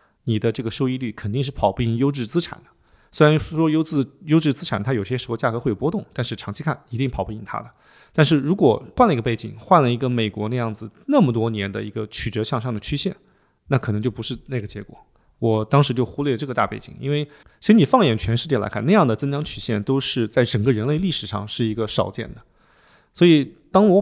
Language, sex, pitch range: Chinese, male, 115-155 Hz